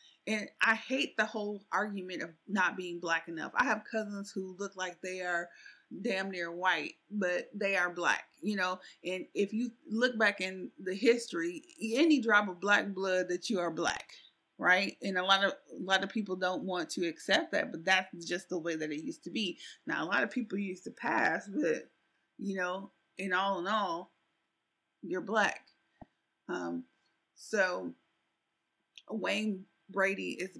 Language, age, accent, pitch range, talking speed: English, 30-49, American, 185-220 Hz, 180 wpm